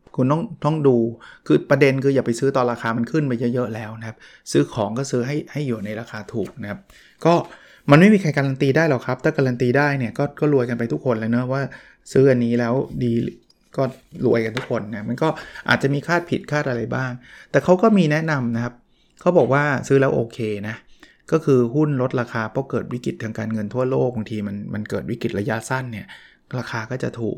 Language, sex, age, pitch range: Thai, male, 20-39, 115-140 Hz